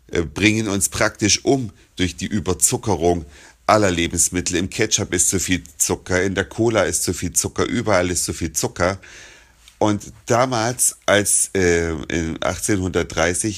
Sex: male